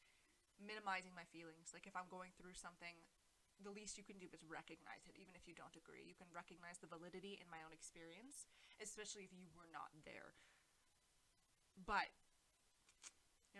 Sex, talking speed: female, 170 wpm